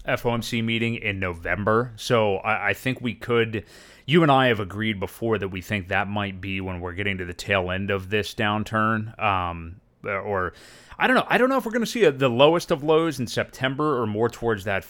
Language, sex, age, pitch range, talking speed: English, male, 30-49, 100-125 Hz, 225 wpm